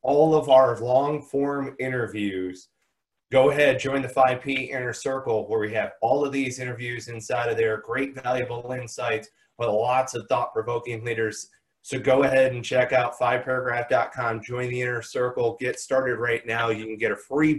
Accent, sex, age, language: American, male, 30-49, English